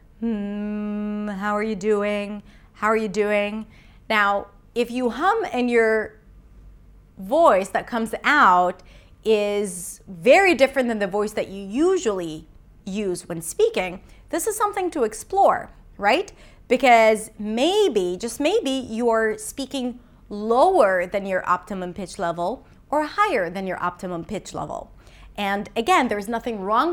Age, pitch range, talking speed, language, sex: 30-49, 195-245 Hz, 135 wpm, English, female